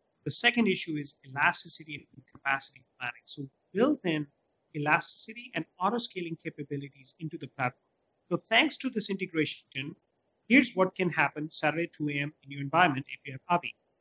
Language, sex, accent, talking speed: English, male, Indian, 155 wpm